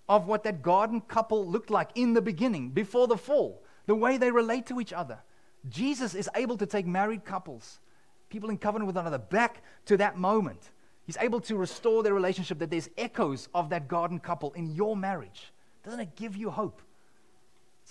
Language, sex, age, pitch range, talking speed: English, male, 30-49, 120-200 Hz, 200 wpm